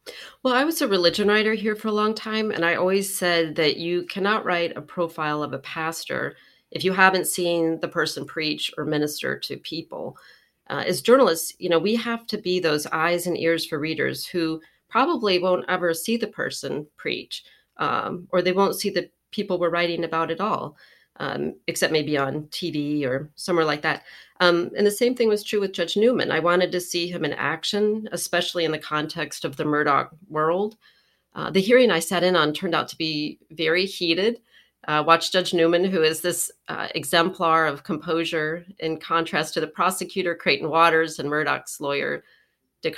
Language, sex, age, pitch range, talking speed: English, female, 40-59, 160-195 Hz, 195 wpm